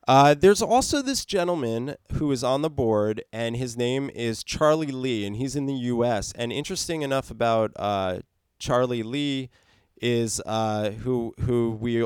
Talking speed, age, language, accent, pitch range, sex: 165 wpm, 20-39, English, American, 115-150 Hz, male